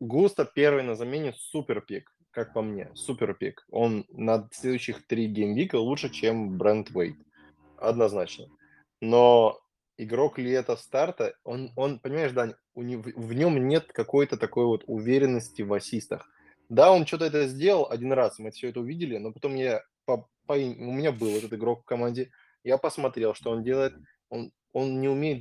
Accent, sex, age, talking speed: native, male, 20-39, 170 wpm